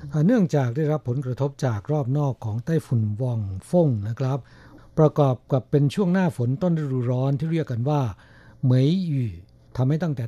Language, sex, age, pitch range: Thai, male, 60-79, 125-150 Hz